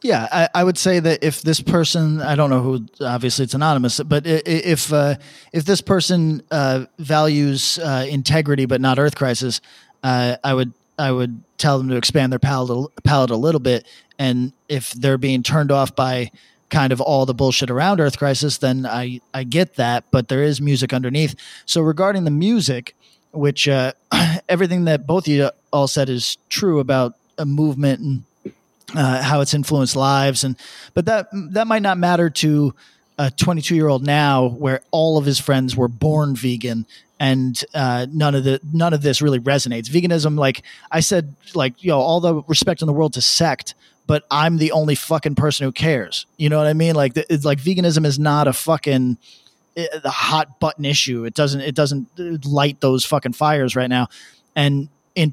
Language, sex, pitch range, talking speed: English, male, 130-155 Hz, 190 wpm